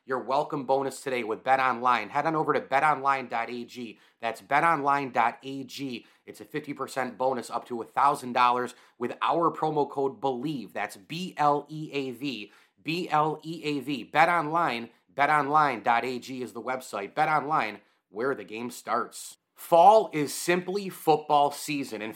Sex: male